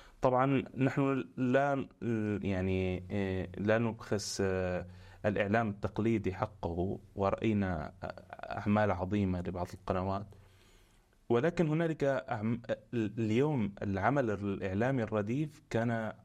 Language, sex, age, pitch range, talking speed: Arabic, male, 30-49, 100-120 Hz, 80 wpm